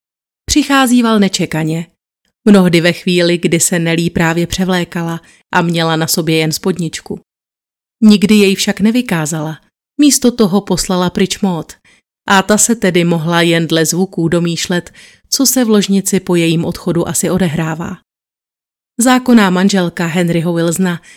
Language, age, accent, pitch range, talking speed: Czech, 30-49, native, 170-200 Hz, 135 wpm